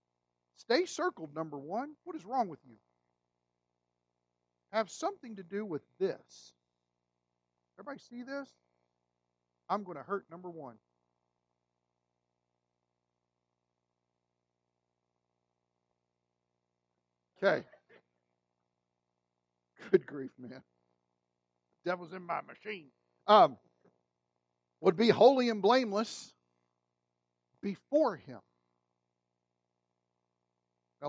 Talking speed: 80 wpm